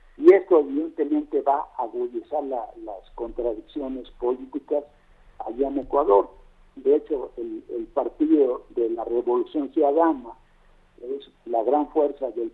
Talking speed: 125 wpm